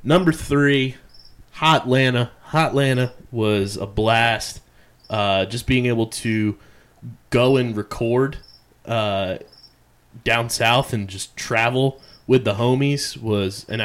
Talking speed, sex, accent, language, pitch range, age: 115 wpm, male, American, English, 105-130 Hz, 20-39